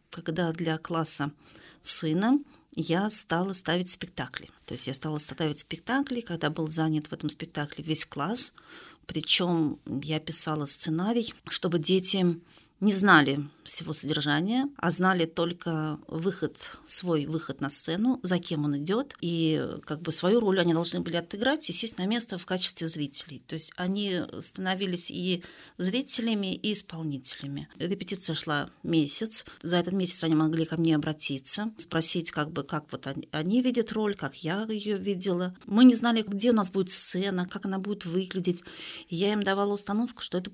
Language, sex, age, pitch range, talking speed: Russian, female, 40-59, 160-205 Hz, 155 wpm